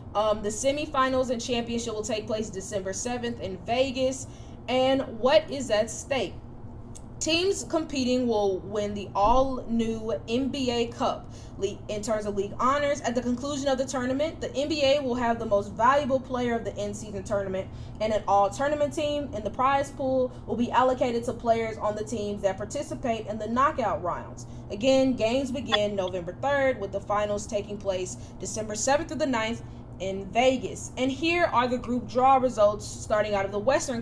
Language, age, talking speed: English, 10-29, 175 wpm